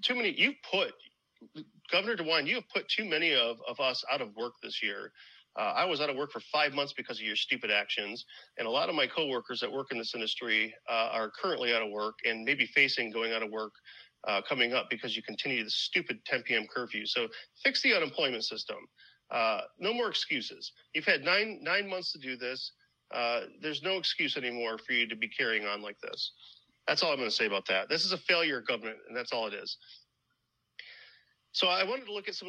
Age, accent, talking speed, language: 40-59, American, 230 wpm, English